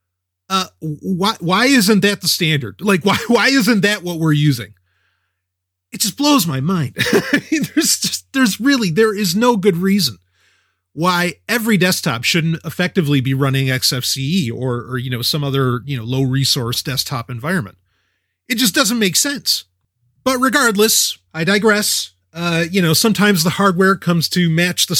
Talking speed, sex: 165 wpm, male